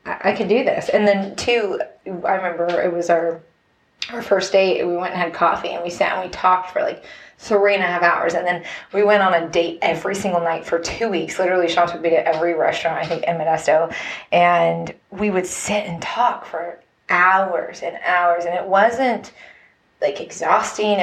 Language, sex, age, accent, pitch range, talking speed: English, female, 20-39, American, 165-195 Hz, 205 wpm